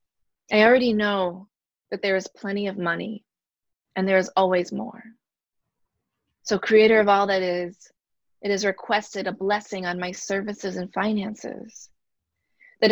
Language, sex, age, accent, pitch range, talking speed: English, female, 30-49, American, 180-215 Hz, 145 wpm